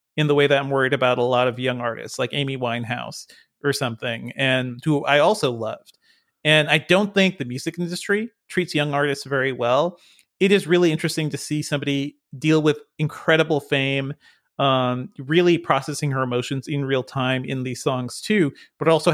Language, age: English, 30-49